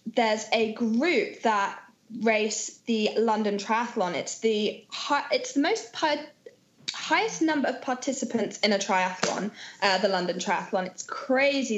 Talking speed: 145 wpm